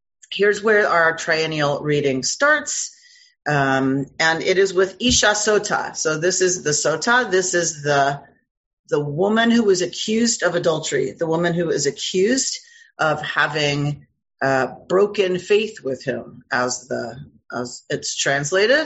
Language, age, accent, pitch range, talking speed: English, 40-59, American, 155-230 Hz, 140 wpm